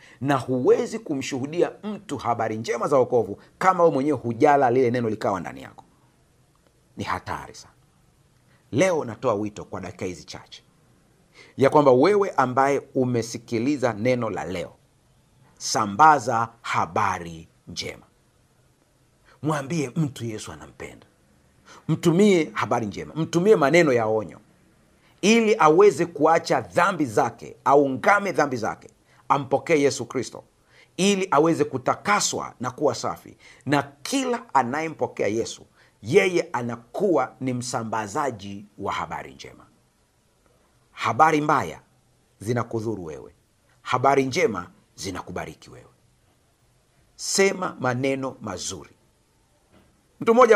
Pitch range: 120-170 Hz